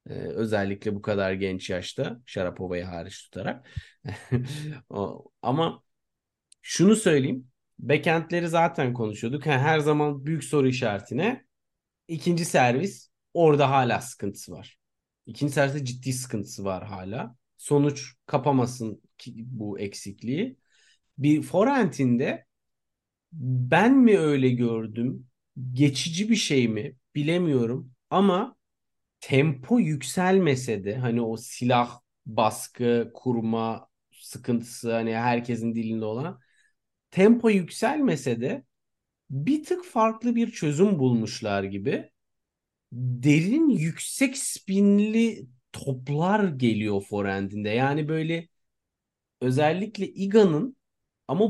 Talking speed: 95 wpm